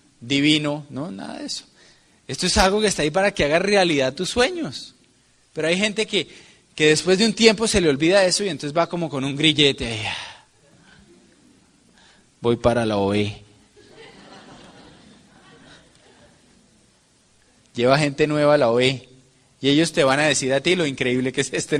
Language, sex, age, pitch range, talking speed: Spanish, male, 20-39, 130-180 Hz, 170 wpm